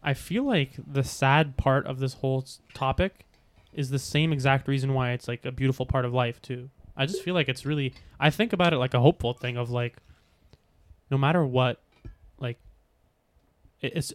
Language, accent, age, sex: English, American, 20-39, male